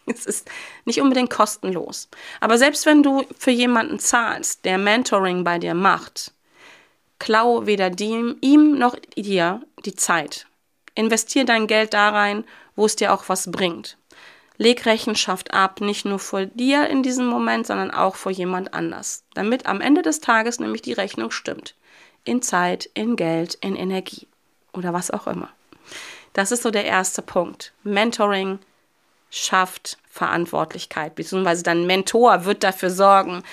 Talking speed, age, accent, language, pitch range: 150 wpm, 30-49, German, German, 195-250 Hz